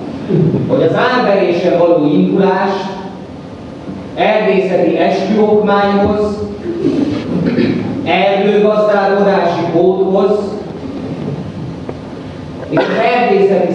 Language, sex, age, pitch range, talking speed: Hungarian, male, 30-49, 170-205 Hz, 50 wpm